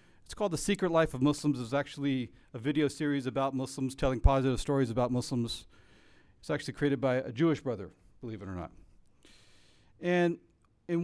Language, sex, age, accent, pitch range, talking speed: English, male, 40-59, American, 105-145 Hz, 175 wpm